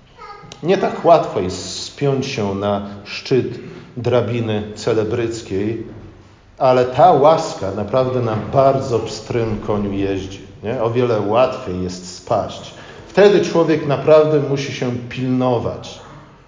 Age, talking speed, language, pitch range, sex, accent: 40-59, 110 wpm, Polish, 110-150 Hz, male, native